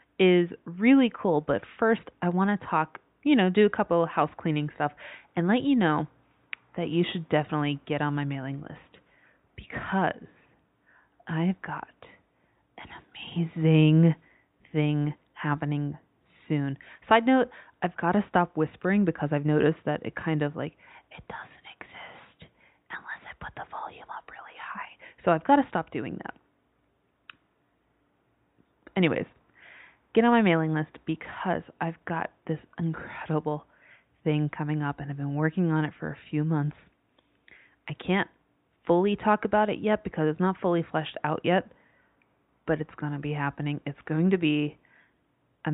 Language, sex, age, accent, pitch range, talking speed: English, female, 30-49, American, 150-180 Hz, 160 wpm